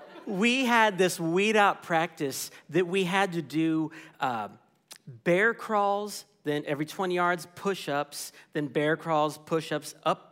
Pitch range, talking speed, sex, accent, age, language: 145-195 Hz, 140 wpm, male, American, 40-59, English